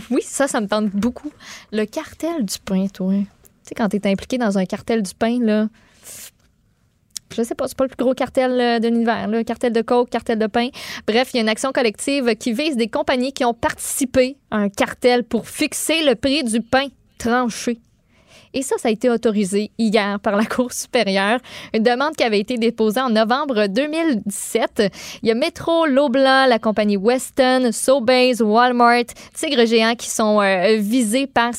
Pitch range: 215-255 Hz